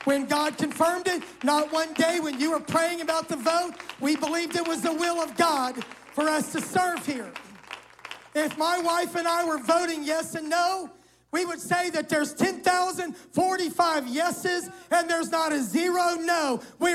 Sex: male